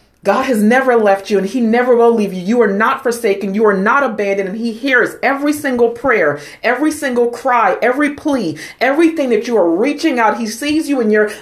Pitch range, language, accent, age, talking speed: 175-240 Hz, English, American, 40-59, 215 wpm